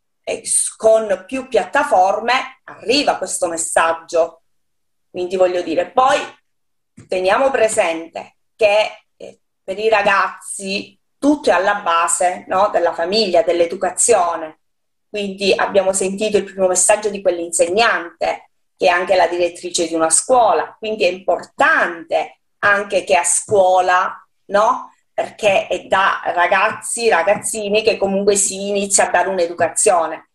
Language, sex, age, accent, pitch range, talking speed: Italian, female, 30-49, native, 175-225 Hz, 115 wpm